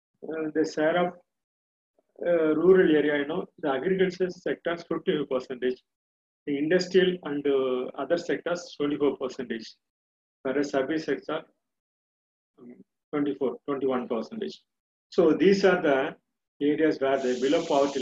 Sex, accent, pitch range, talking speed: male, native, 130-155 Hz, 120 wpm